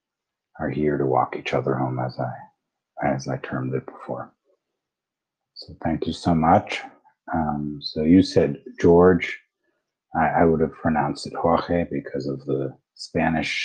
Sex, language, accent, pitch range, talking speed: male, English, American, 70-85 Hz, 155 wpm